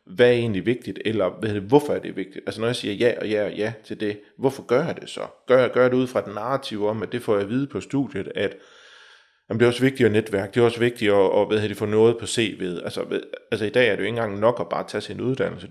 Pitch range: 105-130 Hz